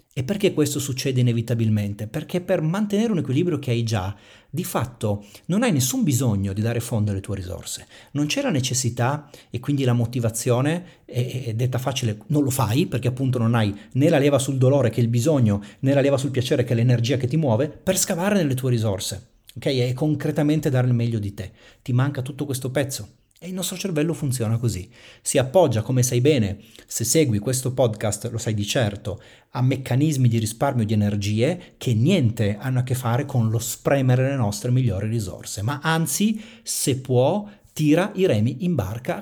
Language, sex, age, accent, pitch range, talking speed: Italian, male, 40-59, native, 115-145 Hz, 195 wpm